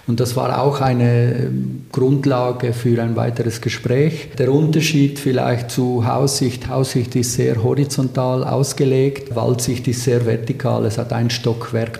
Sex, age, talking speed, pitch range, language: male, 50-69, 140 wpm, 120-140 Hz, German